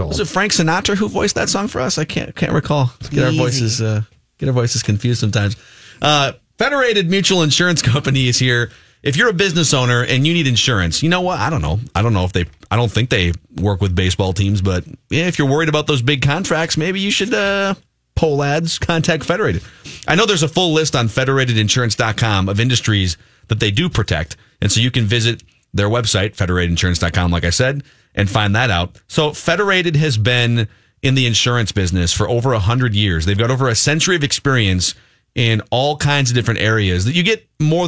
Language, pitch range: English, 105-150 Hz